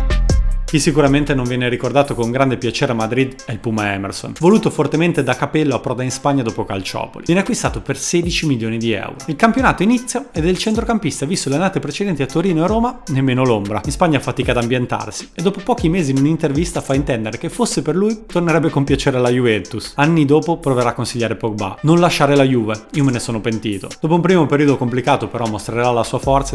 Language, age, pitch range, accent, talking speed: Italian, 30-49, 120-170 Hz, native, 215 wpm